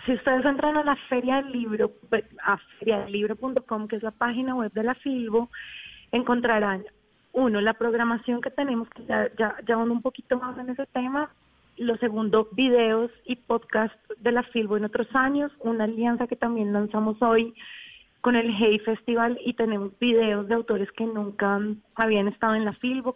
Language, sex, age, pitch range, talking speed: Spanish, female, 30-49, 215-250 Hz, 175 wpm